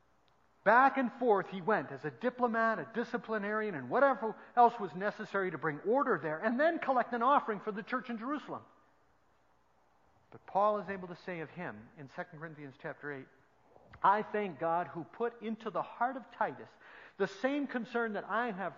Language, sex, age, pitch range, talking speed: English, male, 50-69, 185-260 Hz, 185 wpm